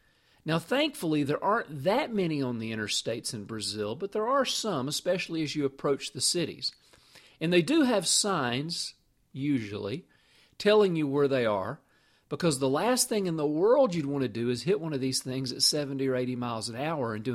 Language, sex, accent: English, male, American